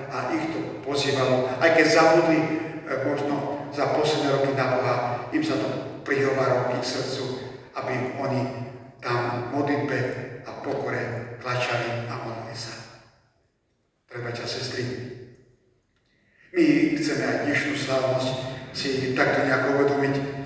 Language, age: Slovak, 50-69